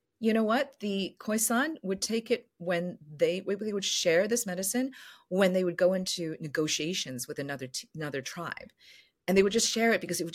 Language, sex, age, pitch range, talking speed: English, female, 40-59, 140-185 Hz, 195 wpm